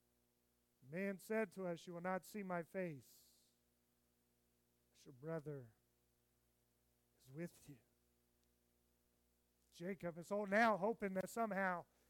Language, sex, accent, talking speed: English, male, American, 110 wpm